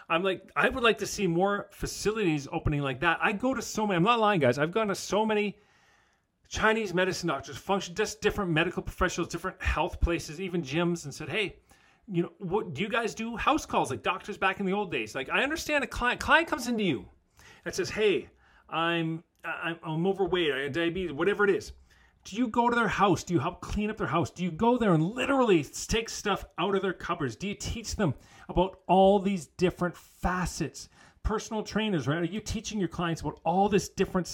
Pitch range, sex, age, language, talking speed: 155-205 Hz, male, 40-59, English, 220 wpm